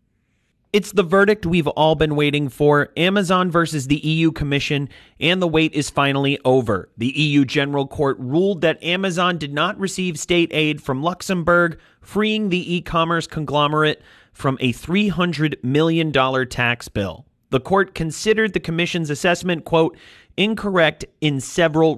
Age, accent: 30-49, American